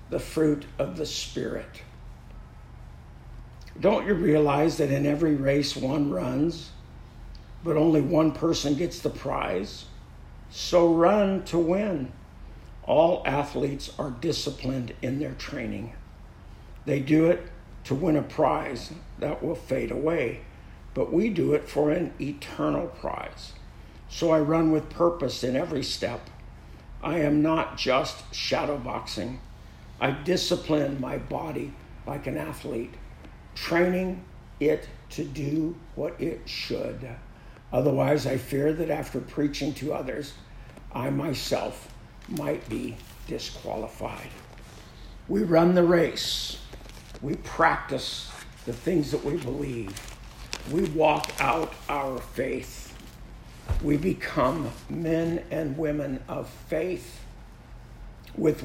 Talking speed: 120 wpm